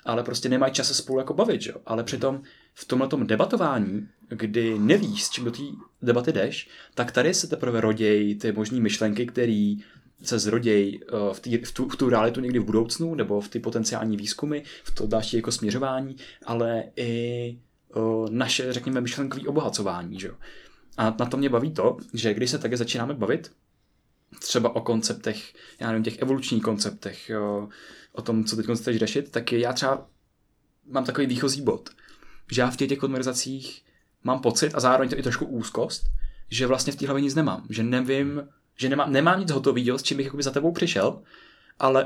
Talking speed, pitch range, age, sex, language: 185 wpm, 115-140 Hz, 20-39, male, Czech